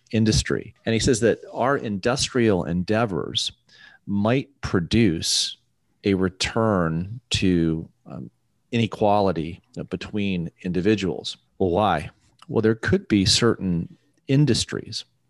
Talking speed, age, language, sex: 105 wpm, 40-59, English, male